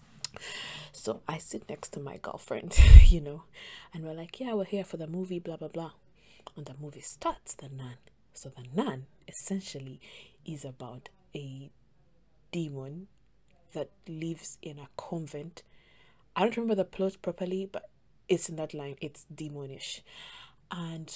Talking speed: 155 wpm